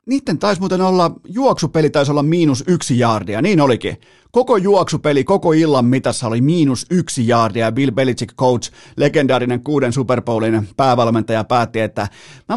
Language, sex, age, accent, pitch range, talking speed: Finnish, male, 30-49, native, 115-145 Hz, 155 wpm